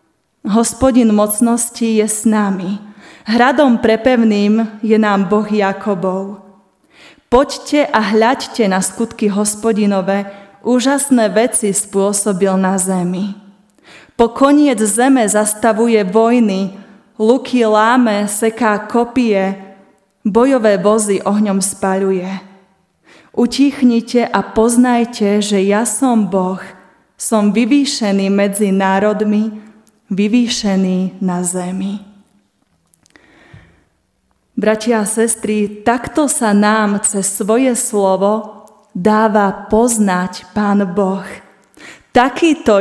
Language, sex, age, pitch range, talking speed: Slovak, female, 20-39, 200-230 Hz, 90 wpm